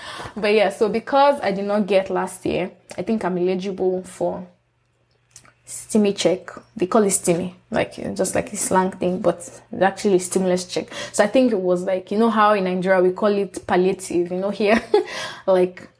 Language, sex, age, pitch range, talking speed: English, female, 20-39, 185-215 Hz, 205 wpm